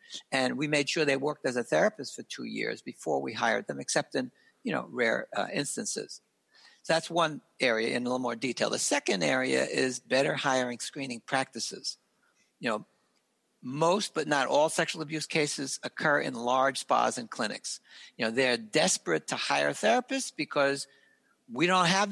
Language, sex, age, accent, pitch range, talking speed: English, male, 60-79, American, 135-175 Hz, 180 wpm